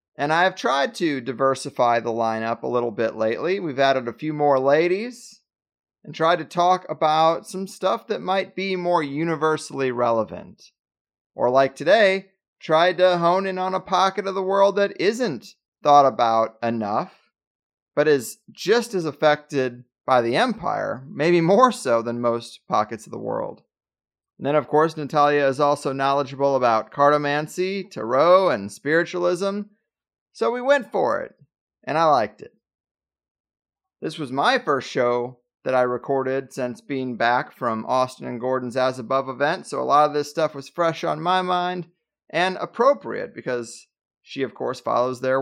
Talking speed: 165 wpm